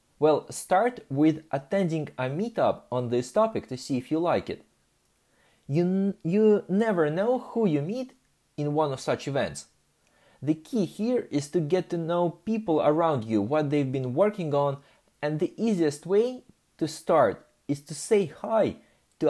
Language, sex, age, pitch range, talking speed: English, male, 30-49, 140-195 Hz, 170 wpm